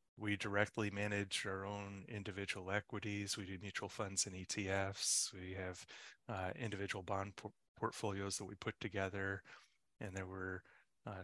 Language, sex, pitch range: English, male, 95-110 Hz